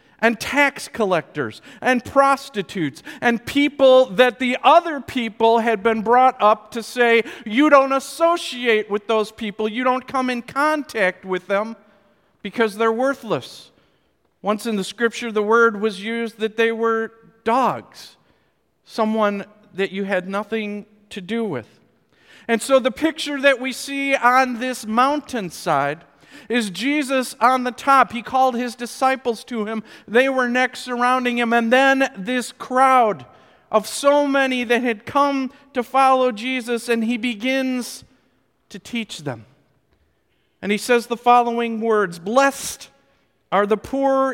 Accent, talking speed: American, 145 wpm